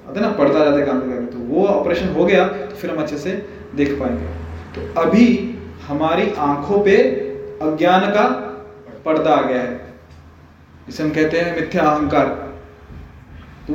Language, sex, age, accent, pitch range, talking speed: Hindi, male, 20-39, native, 145-195 Hz, 140 wpm